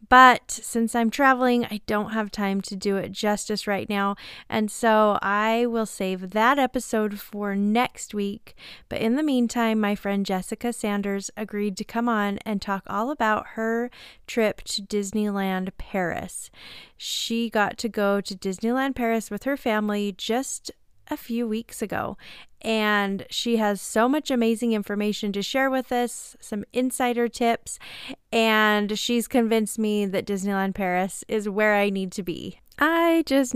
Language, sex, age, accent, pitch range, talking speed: English, female, 30-49, American, 200-240 Hz, 160 wpm